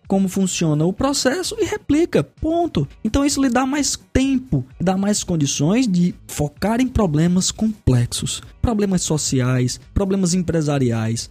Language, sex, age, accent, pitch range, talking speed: Portuguese, male, 20-39, Brazilian, 145-220 Hz, 135 wpm